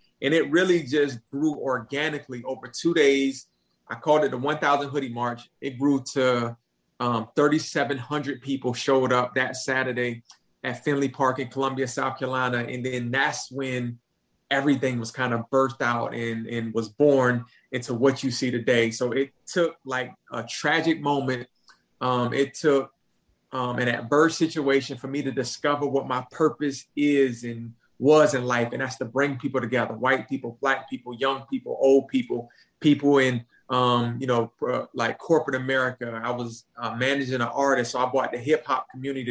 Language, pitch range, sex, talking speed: English, 125-145 Hz, male, 170 wpm